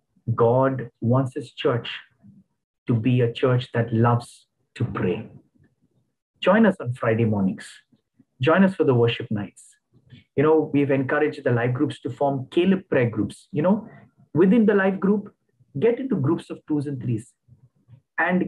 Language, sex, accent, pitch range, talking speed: English, male, Indian, 125-160 Hz, 160 wpm